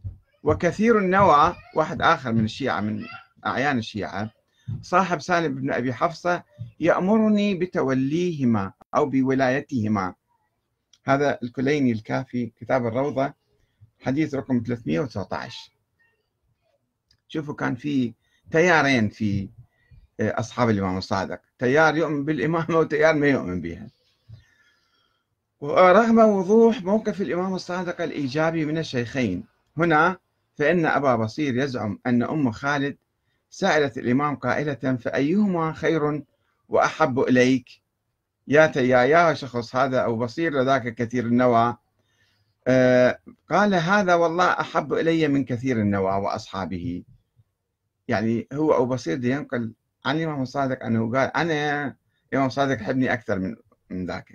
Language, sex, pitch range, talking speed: Arabic, male, 115-155 Hz, 110 wpm